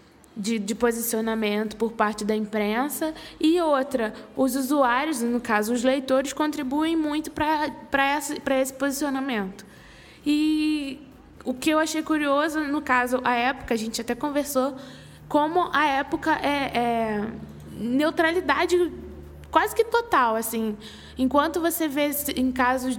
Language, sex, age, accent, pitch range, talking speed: Portuguese, female, 10-29, Brazilian, 235-285 Hz, 130 wpm